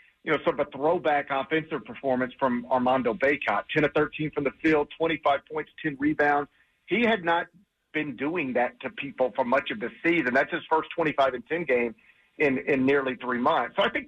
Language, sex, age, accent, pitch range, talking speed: English, male, 40-59, American, 130-160 Hz, 210 wpm